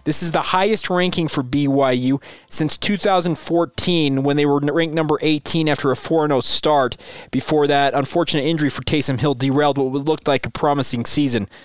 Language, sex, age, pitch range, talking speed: English, male, 20-39, 135-170 Hz, 180 wpm